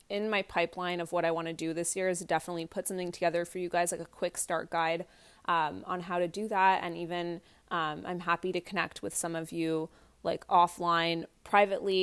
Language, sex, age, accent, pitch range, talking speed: English, female, 20-39, American, 160-185 Hz, 220 wpm